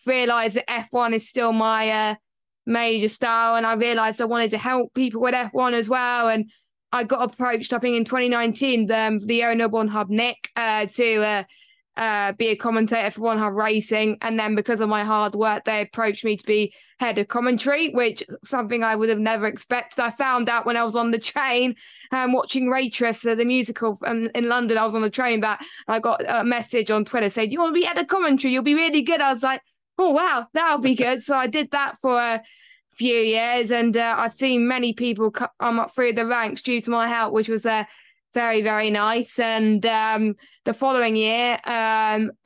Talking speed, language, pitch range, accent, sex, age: 220 wpm, English, 220-250 Hz, British, female, 20-39